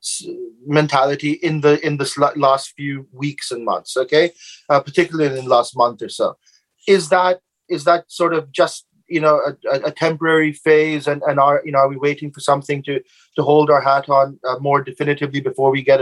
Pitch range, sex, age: 135-155 Hz, male, 30-49